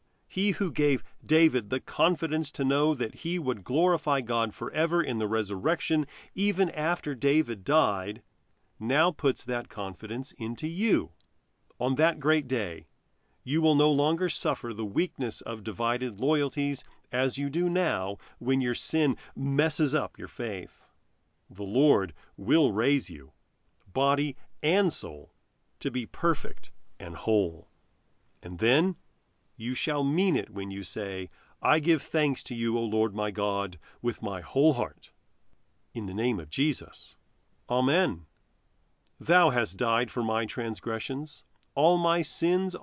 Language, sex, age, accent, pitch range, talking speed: English, male, 40-59, American, 110-160 Hz, 145 wpm